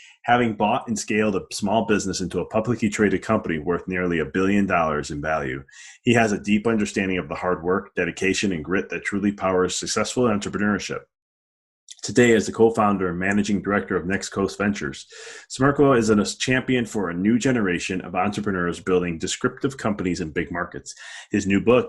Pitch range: 90-120 Hz